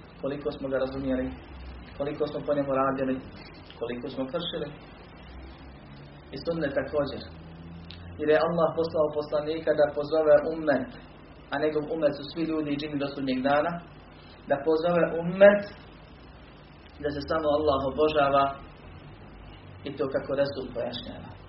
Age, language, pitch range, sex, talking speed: 30-49, Croatian, 130-155 Hz, male, 125 wpm